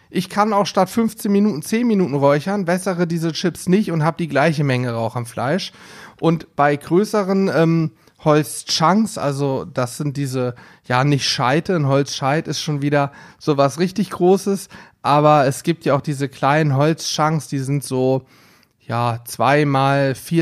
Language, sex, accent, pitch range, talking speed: German, male, German, 135-170 Hz, 160 wpm